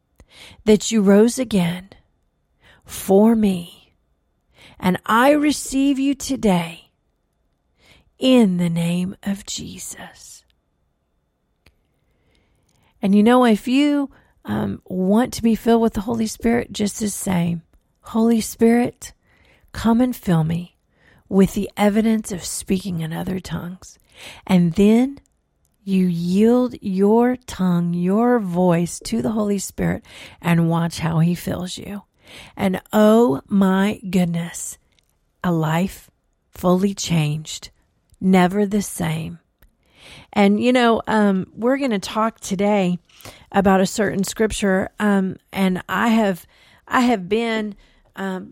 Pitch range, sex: 175-225 Hz, female